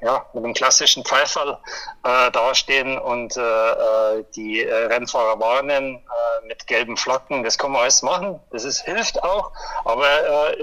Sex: male